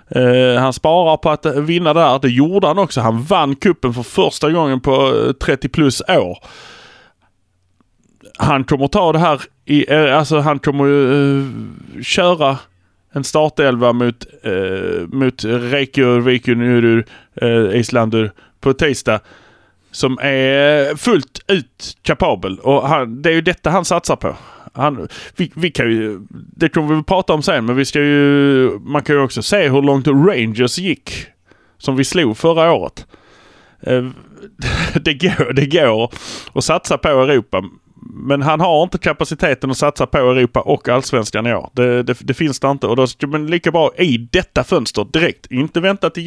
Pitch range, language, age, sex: 120-150 Hz, Swedish, 20-39, male